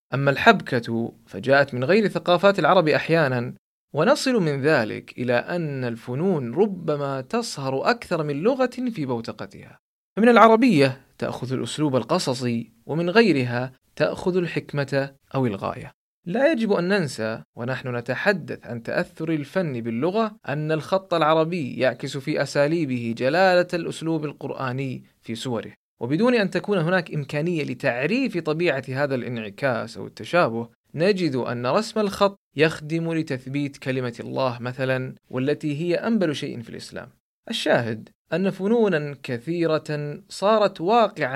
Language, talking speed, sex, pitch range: Arabic, 125 wpm, male, 130-185 Hz